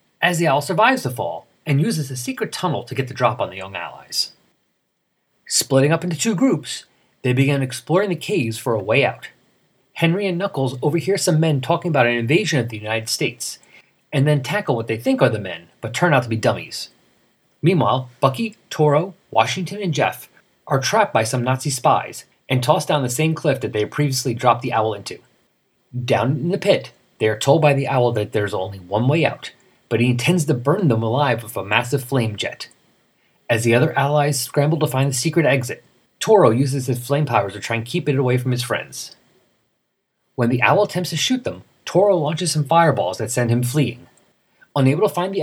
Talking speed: 210 wpm